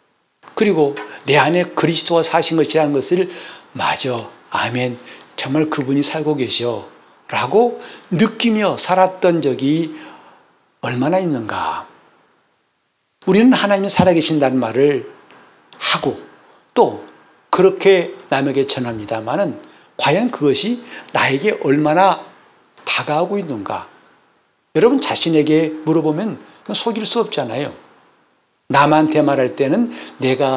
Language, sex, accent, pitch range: Korean, male, native, 140-195 Hz